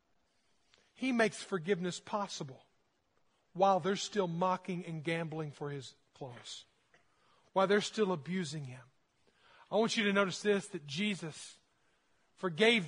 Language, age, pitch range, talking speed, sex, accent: English, 40-59, 205-260 Hz, 125 wpm, male, American